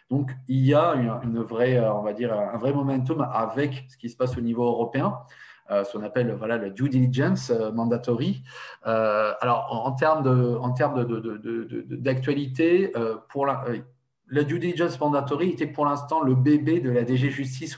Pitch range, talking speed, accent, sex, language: 120-140 Hz, 150 wpm, French, male, French